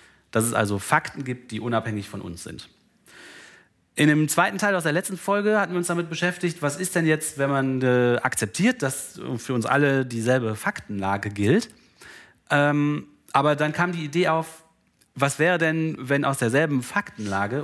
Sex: male